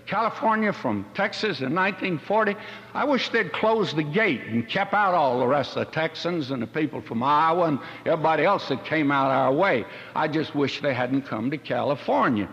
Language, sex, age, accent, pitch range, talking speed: English, male, 60-79, American, 120-165 Hz, 195 wpm